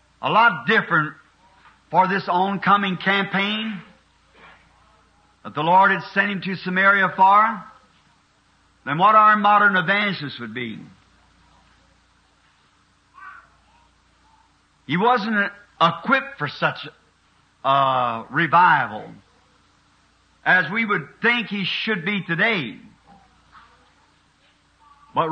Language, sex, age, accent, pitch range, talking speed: English, male, 50-69, American, 165-215 Hz, 90 wpm